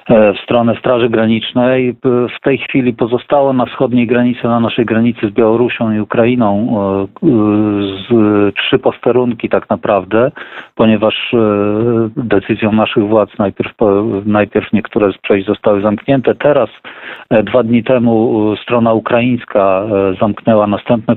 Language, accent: Polish, native